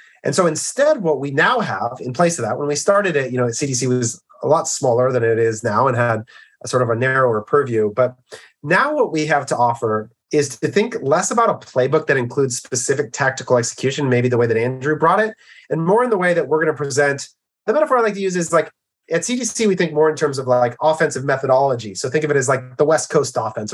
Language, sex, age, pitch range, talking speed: English, male, 30-49, 125-170 Hz, 250 wpm